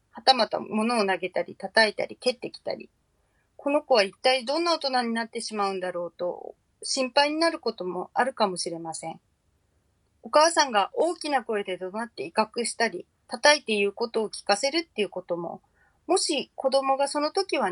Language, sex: Japanese, female